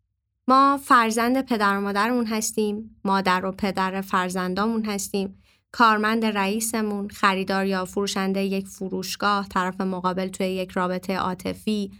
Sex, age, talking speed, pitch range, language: female, 20-39, 120 wpm, 185-260 Hz, Persian